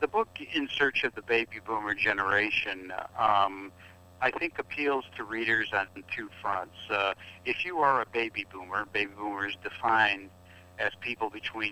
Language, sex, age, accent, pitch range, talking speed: English, male, 60-79, American, 90-115 Hz, 160 wpm